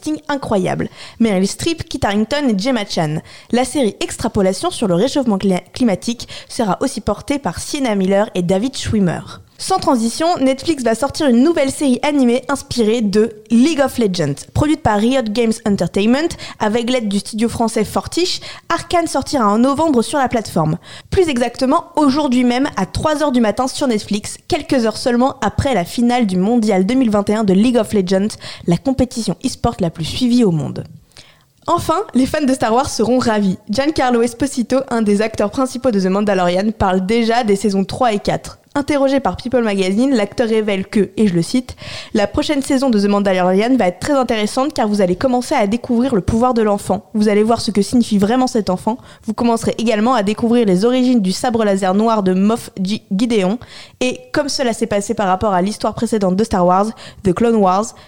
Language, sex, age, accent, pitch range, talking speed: French, female, 20-39, French, 200-260 Hz, 190 wpm